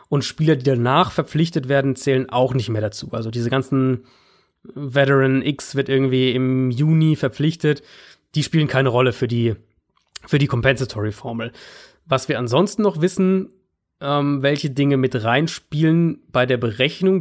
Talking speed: 145 wpm